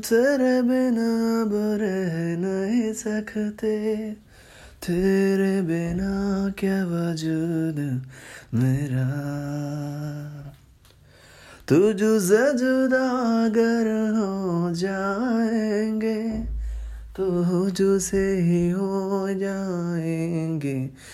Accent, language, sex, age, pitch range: native, Telugu, male, 20-39, 160-205 Hz